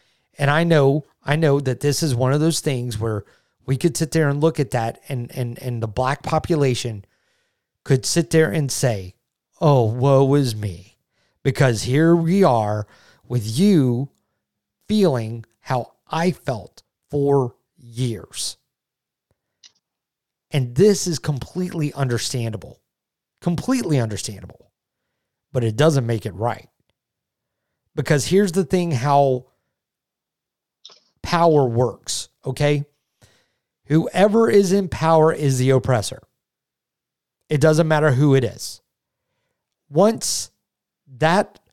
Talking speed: 120 wpm